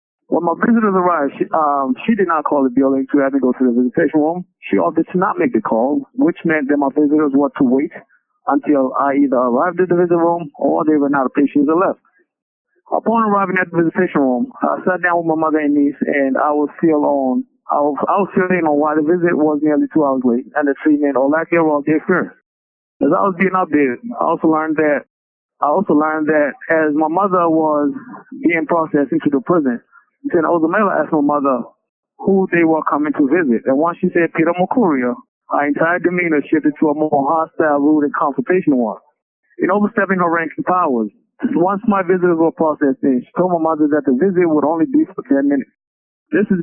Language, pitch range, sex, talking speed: English, 145-185 Hz, male, 215 wpm